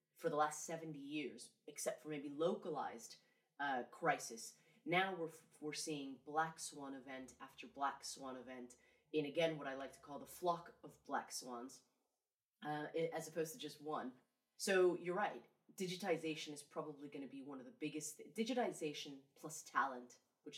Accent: American